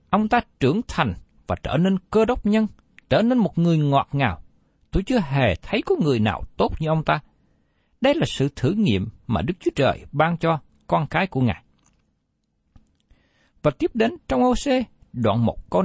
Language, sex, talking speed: Vietnamese, male, 190 wpm